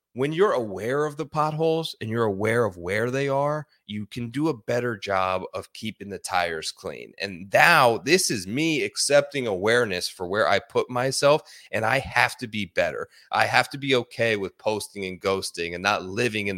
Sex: male